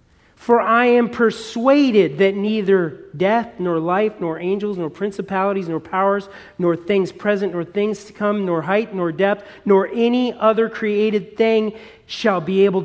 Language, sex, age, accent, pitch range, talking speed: English, male, 40-59, American, 155-205 Hz, 160 wpm